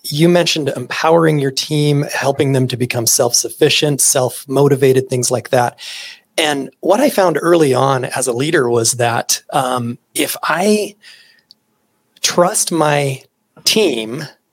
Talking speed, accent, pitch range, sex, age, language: 130 wpm, American, 125-165 Hz, male, 30-49, English